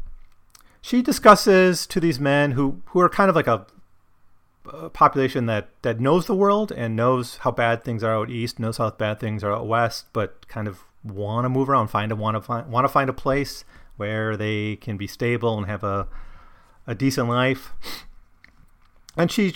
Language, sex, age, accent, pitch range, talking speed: English, male, 30-49, American, 100-130 Hz, 195 wpm